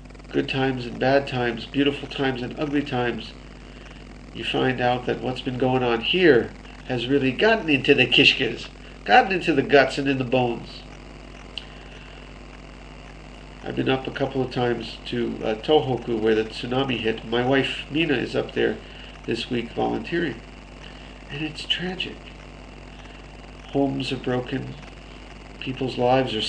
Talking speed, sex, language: 145 wpm, male, English